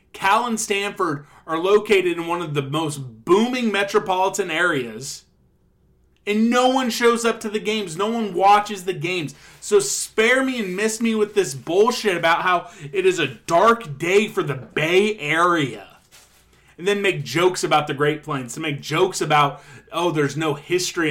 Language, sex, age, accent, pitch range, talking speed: English, male, 30-49, American, 145-200 Hz, 175 wpm